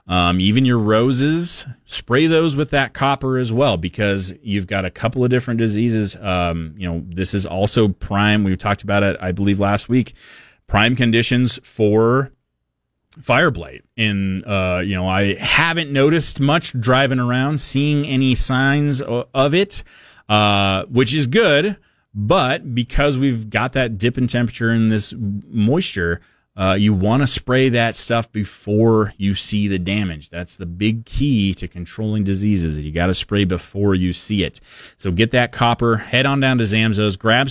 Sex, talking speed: male, 175 wpm